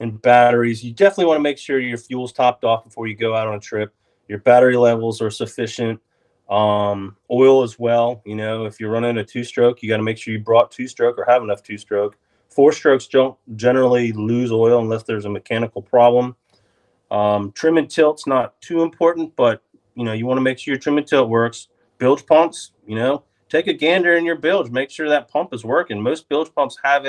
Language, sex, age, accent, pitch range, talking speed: English, male, 30-49, American, 110-135 Hz, 215 wpm